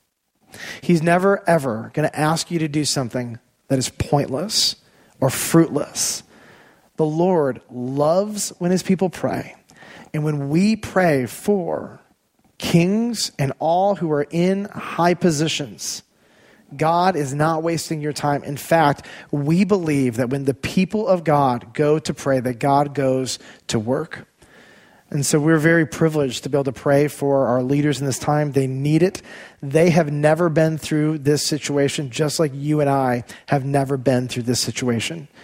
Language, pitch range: English, 140-165 Hz